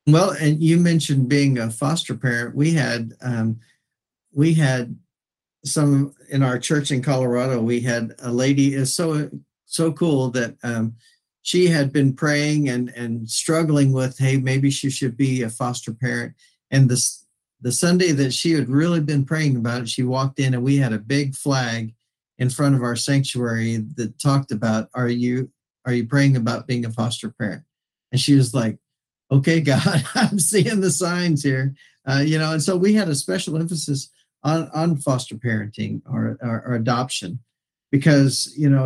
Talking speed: 180 wpm